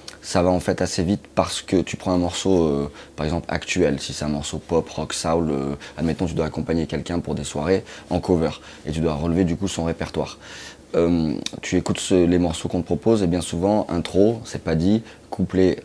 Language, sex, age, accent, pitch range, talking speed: French, male, 20-39, French, 80-95 Hz, 225 wpm